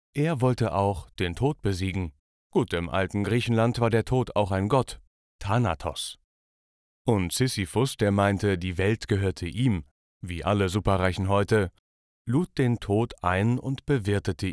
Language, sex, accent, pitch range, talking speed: German, male, German, 90-115 Hz, 145 wpm